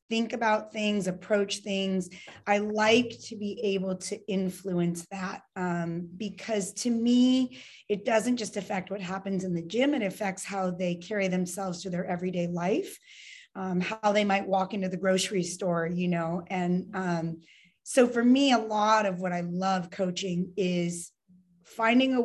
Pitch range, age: 185-220 Hz, 30-49